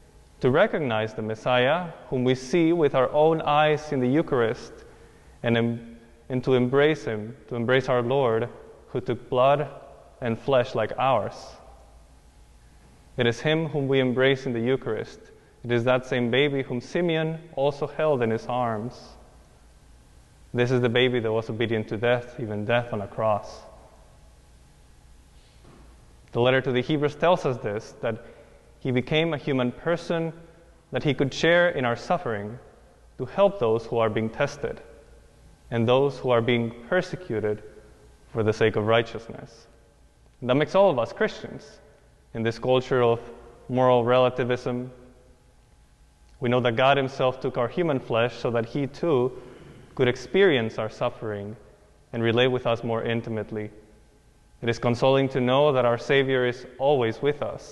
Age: 20-39